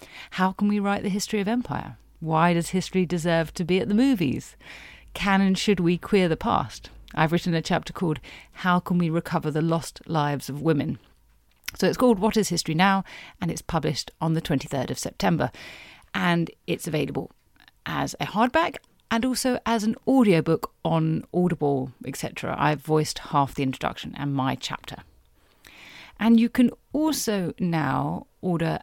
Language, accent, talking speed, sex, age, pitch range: English, British, 170 wpm, female, 40-59, 155-195 Hz